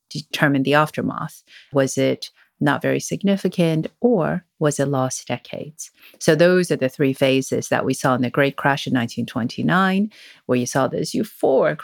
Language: English